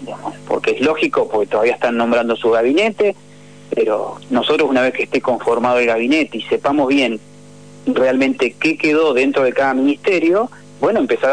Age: 30-49